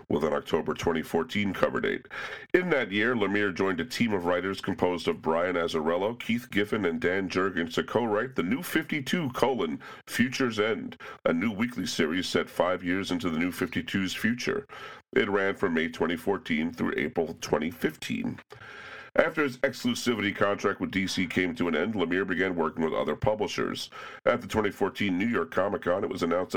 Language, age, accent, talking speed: English, 40-59, American, 175 wpm